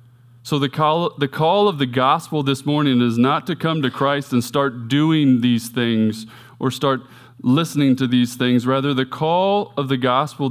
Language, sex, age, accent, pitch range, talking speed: English, male, 20-39, American, 120-140 Hz, 185 wpm